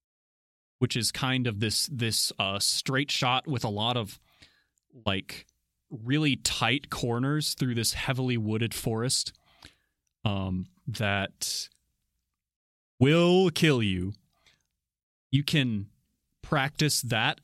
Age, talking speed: 30-49, 105 wpm